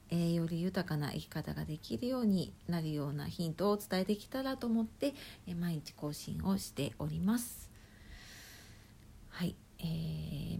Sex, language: female, Japanese